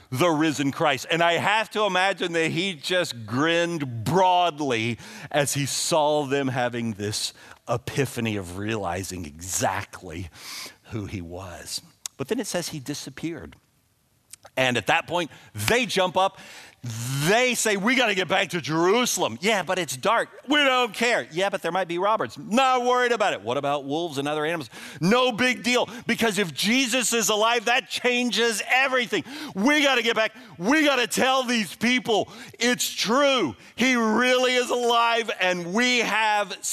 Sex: male